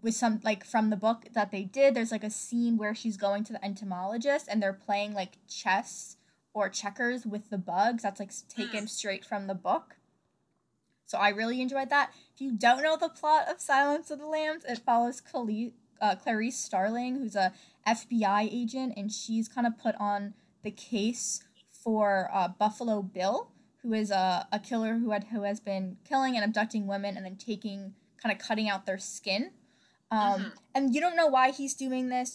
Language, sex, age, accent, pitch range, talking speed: English, female, 10-29, American, 205-240 Hz, 195 wpm